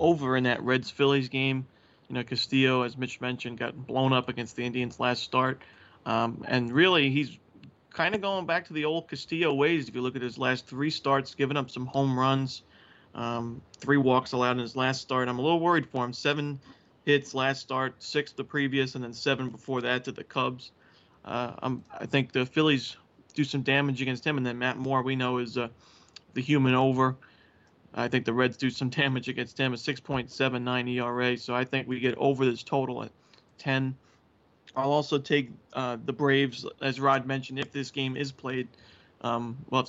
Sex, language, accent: male, English, American